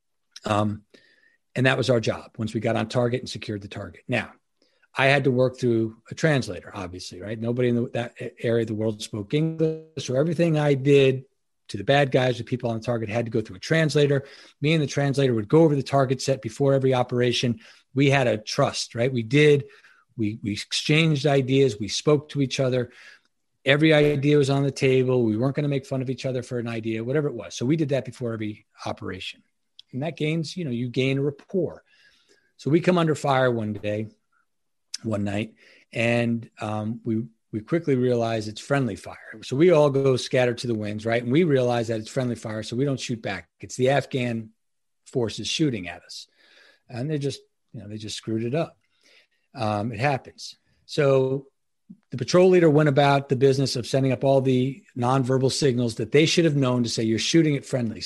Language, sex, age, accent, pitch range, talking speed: English, male, 40-59, American, 115-140 Hz, 210 wpm